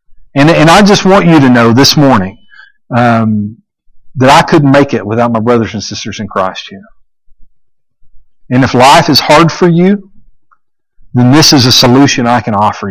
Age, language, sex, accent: 50-69, English, male, American